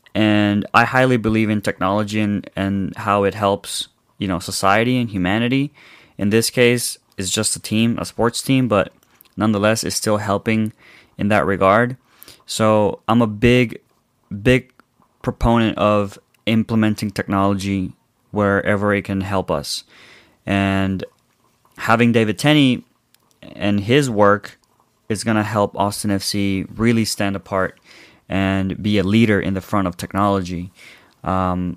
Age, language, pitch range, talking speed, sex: 20-39, English, 100-115 Hz, 140 wpm, male